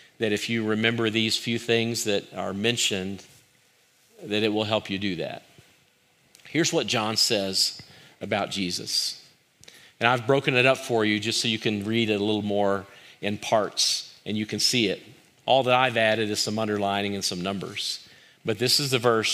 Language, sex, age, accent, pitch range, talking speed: English, male, 50-69, American, 105-125 Hz, 190 wpm